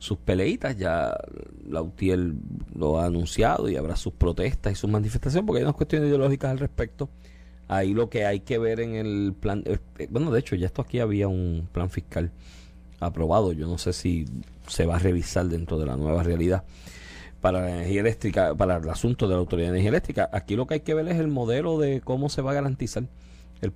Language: Spanish